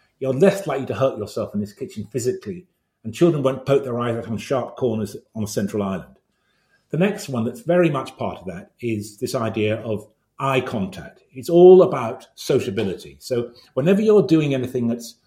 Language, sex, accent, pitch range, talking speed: English, male, British, 105-135 Hz, 195 wpm